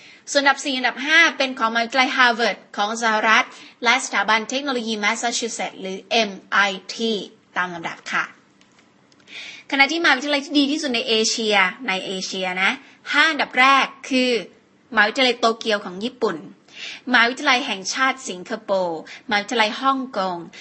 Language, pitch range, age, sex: Thai, 205-260 Hz, 20-39, female